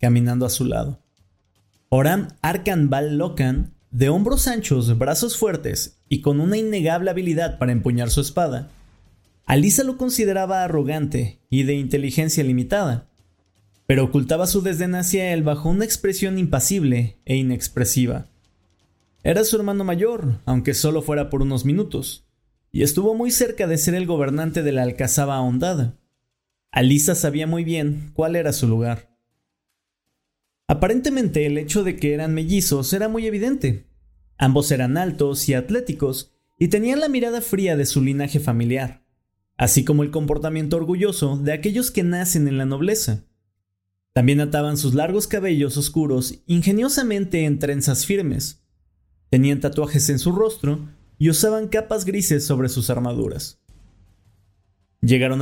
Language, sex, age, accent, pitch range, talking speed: Spanish, male, 30-49, Mexican, 125-175 Hz, 140 wpm